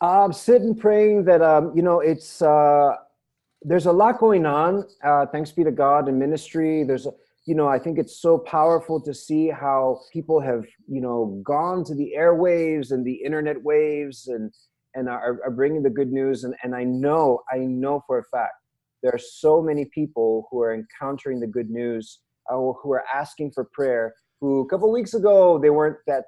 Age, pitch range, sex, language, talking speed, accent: 30-49, 135-170 Hz, male, English, 205 wpm, American